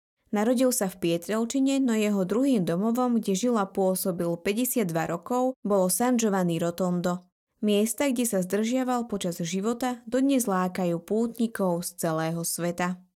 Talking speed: 135 wpm